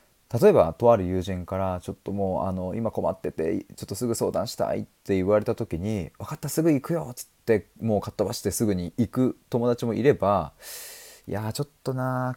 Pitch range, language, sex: 90-145 Hz, Japanese, male